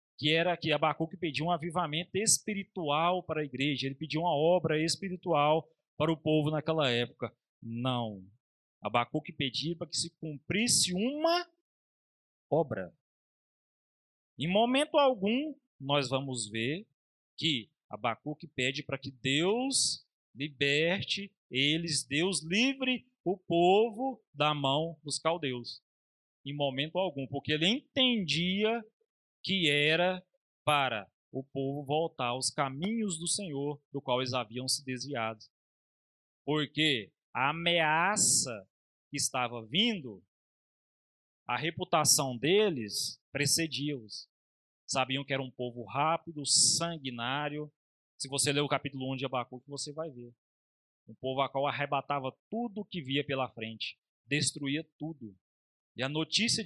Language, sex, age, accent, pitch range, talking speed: Portuguese, male, 40-59, Brazilian, 130-175 Hz, 125 wpm